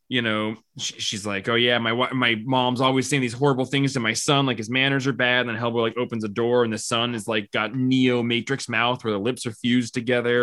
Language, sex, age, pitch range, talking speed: English, male, 20-39, 110-130 Hz, 260 wpm